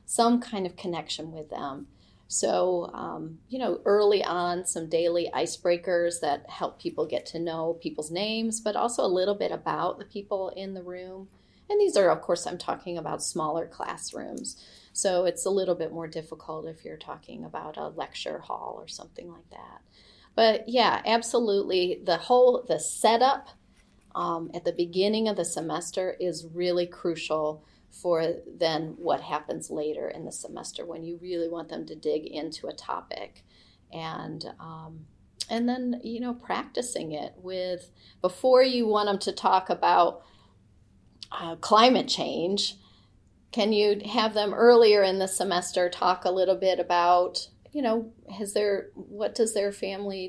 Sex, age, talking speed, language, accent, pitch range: female, 30-49, 165 wpm, English, American, 170-215 Hz